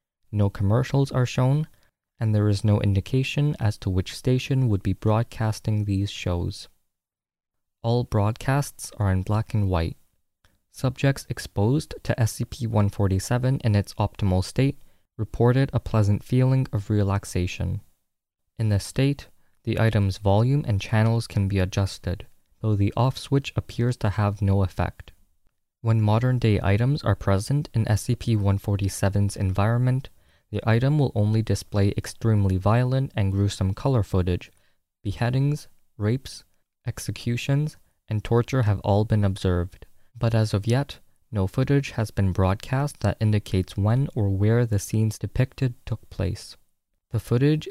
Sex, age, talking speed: male, 20-39, 135 wpm